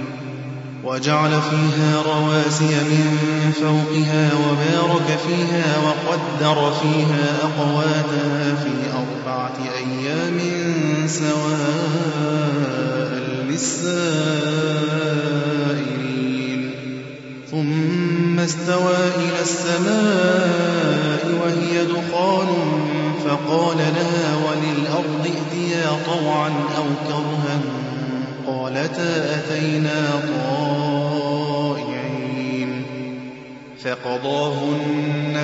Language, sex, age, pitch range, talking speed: Arabic, male, 20-39, 140-155 Hz, 55 wpm